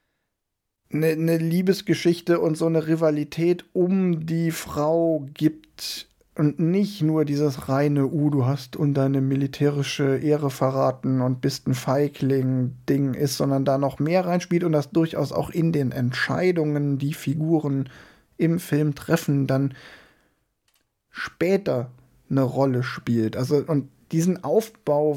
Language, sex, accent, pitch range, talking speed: German, male, German, 140-165 Hz, 130 wpm